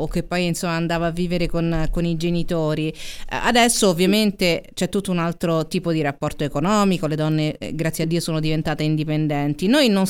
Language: Italian